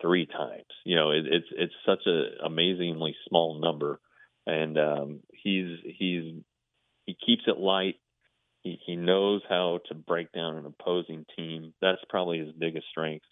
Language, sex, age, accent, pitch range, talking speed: English, male, 30-49, American, 80-90 Hz, 160 wpm